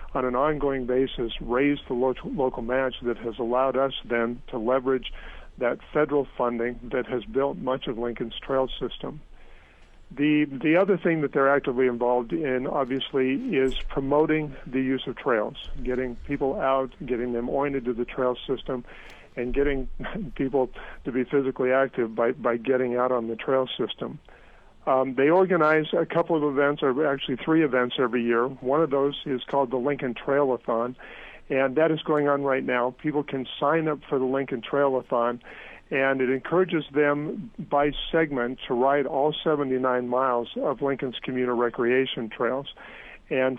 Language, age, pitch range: English, 50-69, 125-140 Hz